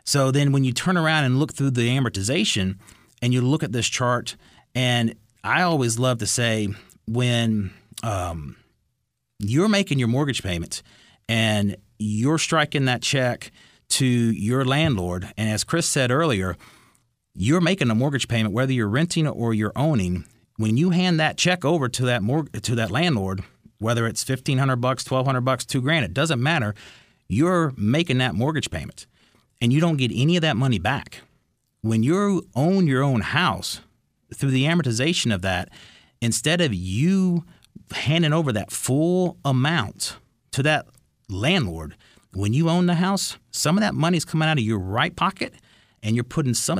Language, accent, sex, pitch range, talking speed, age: English, American, male, 110-155 Hz, 175 wpm, 30-49